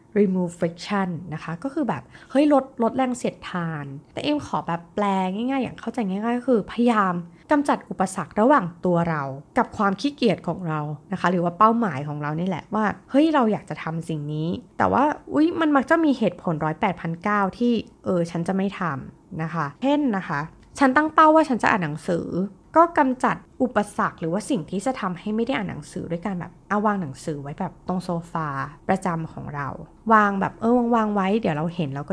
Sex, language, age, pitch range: female, Thai, 20-39, 165-235 Hz